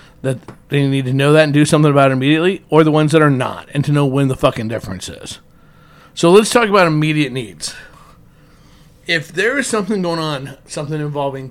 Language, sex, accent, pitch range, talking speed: English, male, American, 135-165 Hz, 210 wpm